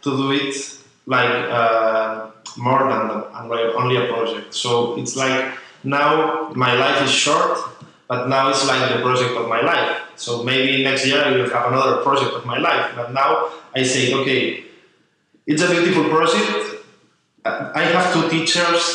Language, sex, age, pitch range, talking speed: English, male, 20-39, 115-140 Hz, 160 wpm